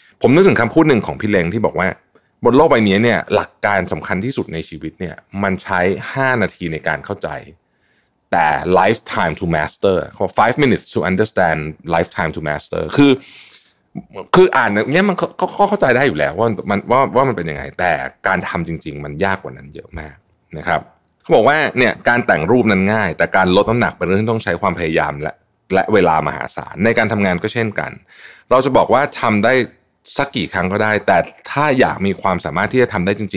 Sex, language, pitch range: male, Thai, 85-120 Hz